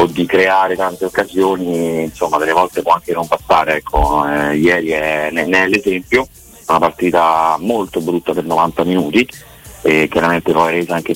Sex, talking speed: male, 150 wpm